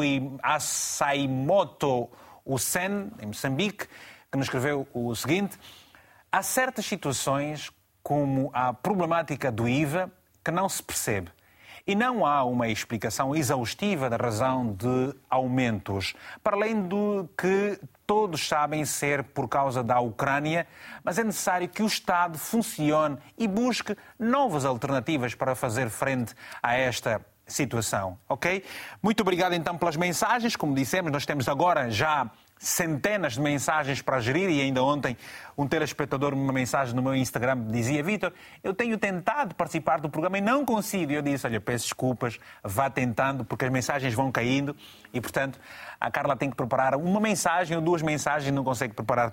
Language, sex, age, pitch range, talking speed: Portuguese, male, 30-49, 130-180 Hz, 155 wpm